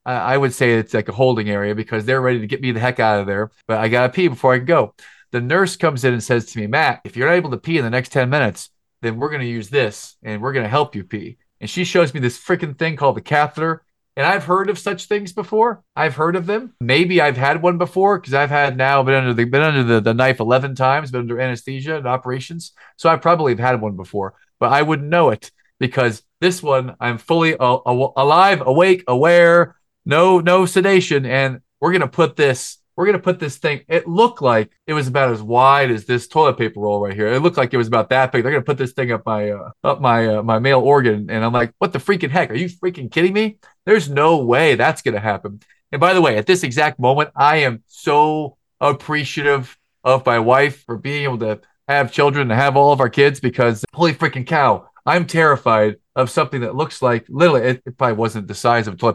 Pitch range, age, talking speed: 120-155 Hz, 40-59, 250 wpm